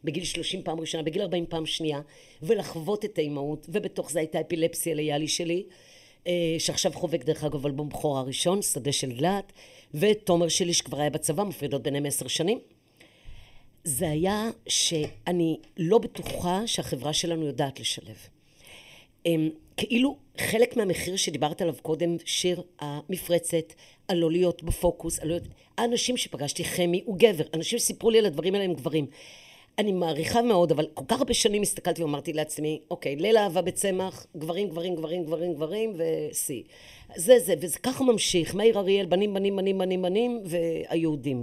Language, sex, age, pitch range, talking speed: Hebrew, female, 50-69, 155-190 Hz, 150 wpm